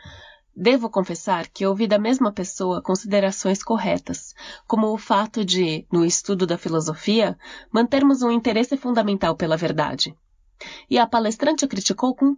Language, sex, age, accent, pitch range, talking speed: Portuguese, female, 20-39, Brazilian, 185-250 Hz, 135 wpm